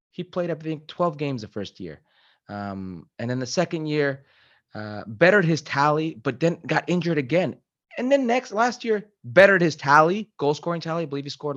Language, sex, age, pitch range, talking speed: Spanish, male, 30-49, 120-170 Hz, 200 wpm